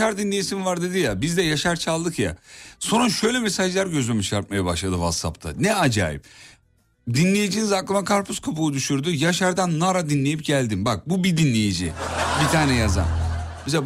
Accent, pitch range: native, 100-160 Hz